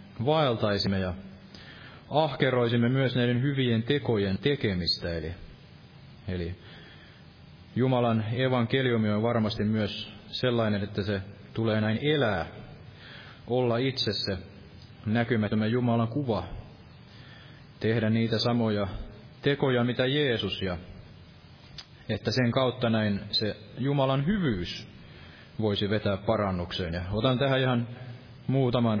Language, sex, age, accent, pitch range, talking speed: Finnish, male, 30-49, native, 100-125 Hz, 100 wpm